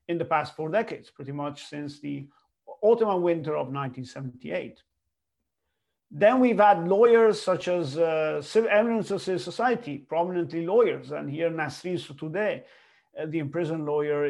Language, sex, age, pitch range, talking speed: English, male, 50-69, 145-195 Hz, 145 wpm